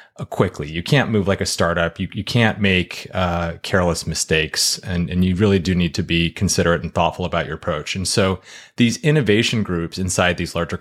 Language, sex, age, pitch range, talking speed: English, male, 30-49, 90-105 Hz, 200 wpm